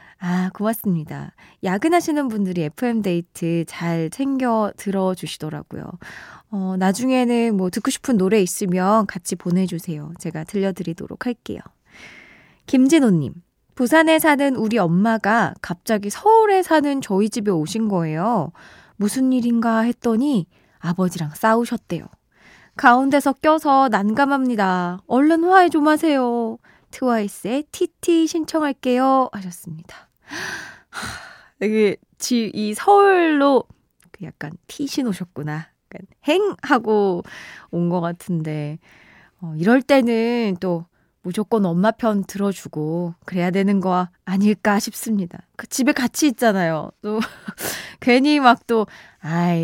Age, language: 20-39, Korean